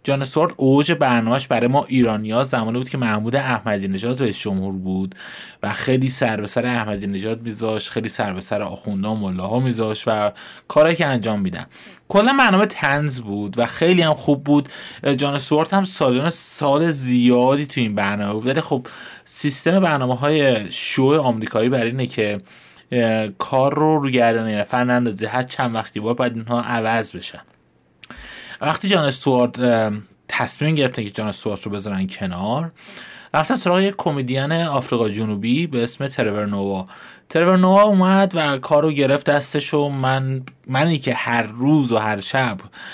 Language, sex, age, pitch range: Persian, male, 30-49, 110-150 Hz